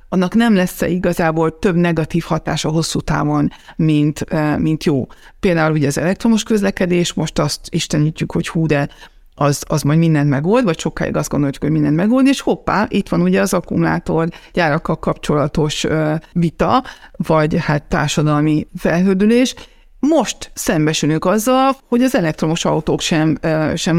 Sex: female